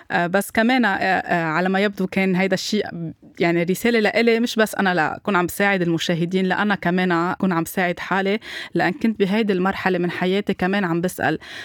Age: 20-39